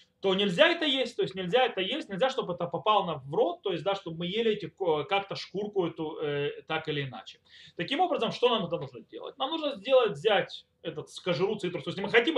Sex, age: male, 30-49